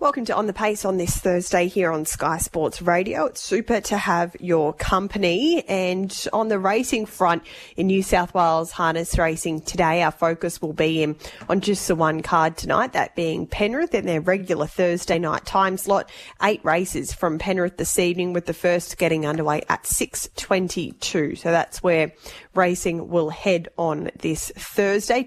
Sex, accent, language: female, Australian, English